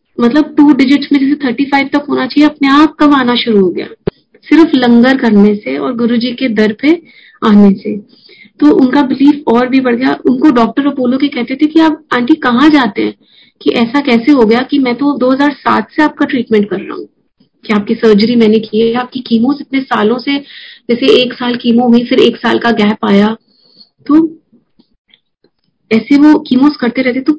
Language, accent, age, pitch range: Hindi, native, 30-49, 225-285 Hz